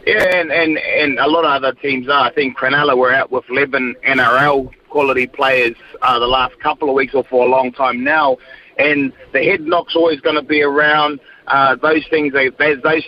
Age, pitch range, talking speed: 30-49, 140-165 Hz, 210 wpm